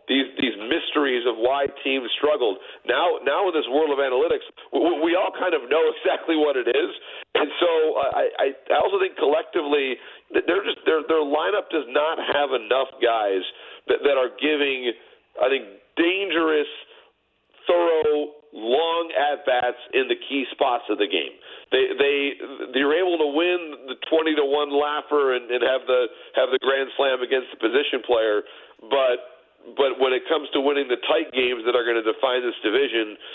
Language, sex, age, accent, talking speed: English, male, 50-69, American, 180 wpm